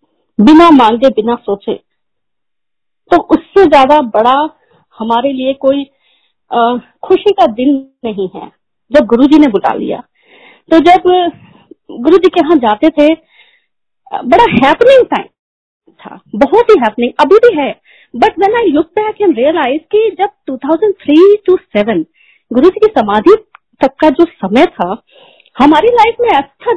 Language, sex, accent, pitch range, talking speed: Hindi, female, native, 255-405 Hz, 145 wpm